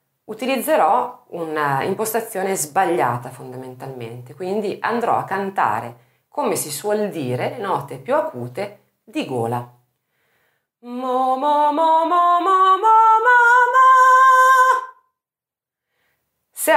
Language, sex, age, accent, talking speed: Italian, female, 30-49, native, 70 wpm